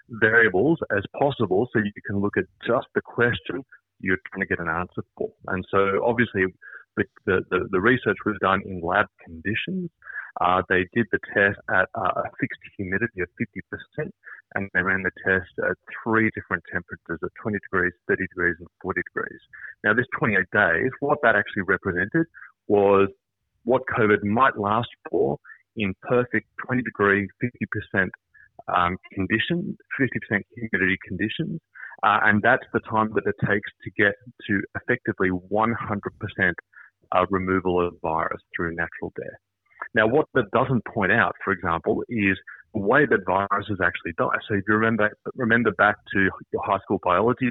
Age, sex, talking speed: 30-49, male, 160 wpm